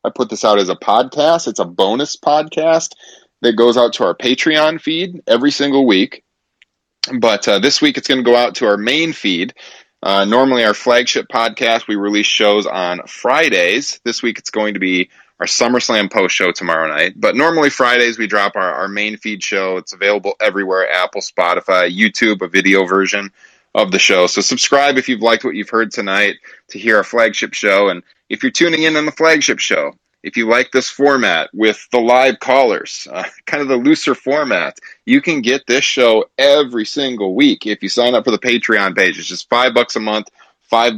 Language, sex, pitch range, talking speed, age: English, male, 100-130 Hz, 205 wpm, 30-49